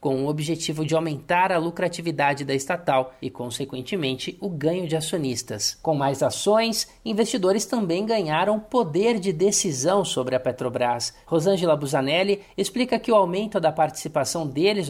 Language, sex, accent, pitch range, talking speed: Portuguese, male, Brazilian, 155-205 Hz, 145 wpm